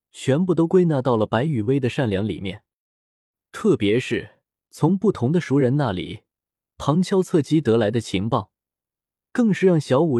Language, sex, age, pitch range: Chinese, male, 20-39, 110-155 Hz